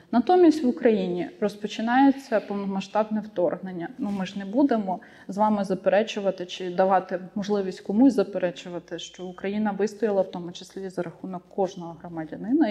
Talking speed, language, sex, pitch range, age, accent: 130 wpm, Ukrainian, female, 185-245 Hz, 20-39, native